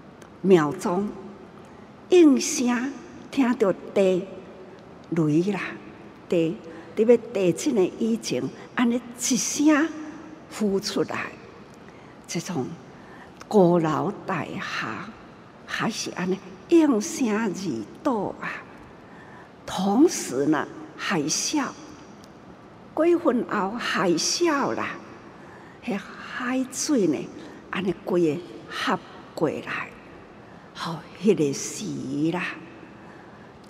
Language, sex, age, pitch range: Chinese, female, 60-79, 175-255 Hz